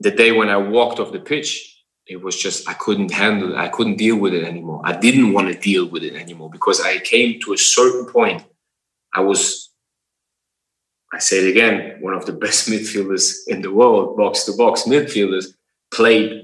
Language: English